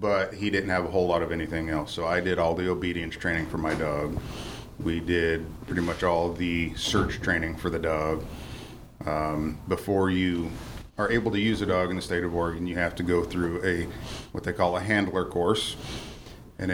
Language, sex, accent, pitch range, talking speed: English, male, American, 85-100 Hz, 210 wpm